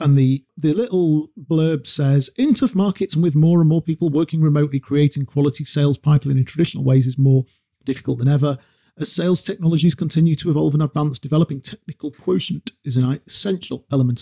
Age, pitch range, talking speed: 40-59, 130-170 Hz, 185 wpm